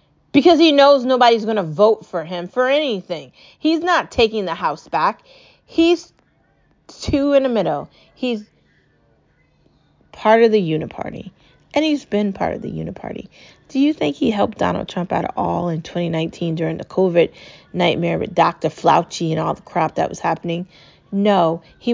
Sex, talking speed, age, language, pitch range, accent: female, 170 wpm, 30-49, English, 170-215 Hz, American